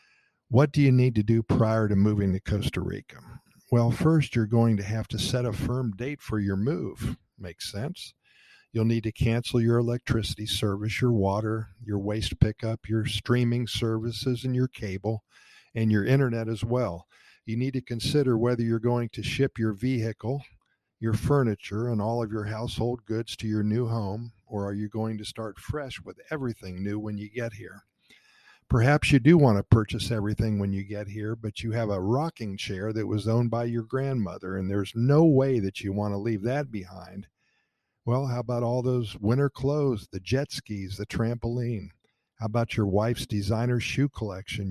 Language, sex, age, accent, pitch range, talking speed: English, male, 50-69, American, 105-125 Hz, 190 wpm